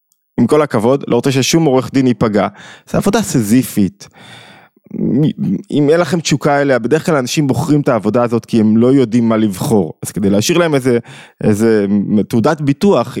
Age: 20-39